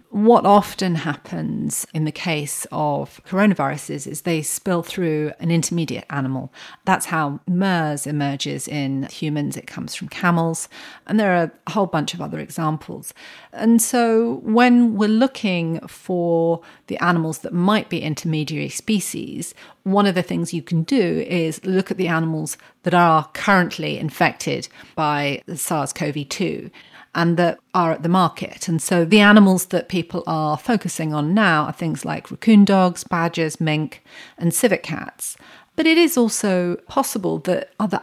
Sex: female